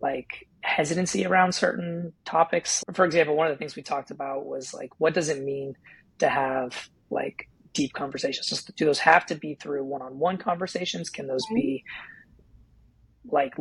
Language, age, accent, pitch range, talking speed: English, 30-49, American, 140-175 Hz, 165 wpm